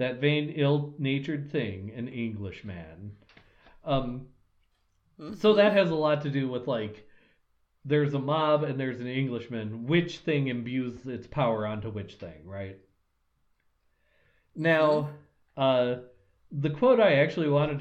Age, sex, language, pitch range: 40-59, male, English, 110-150 Hz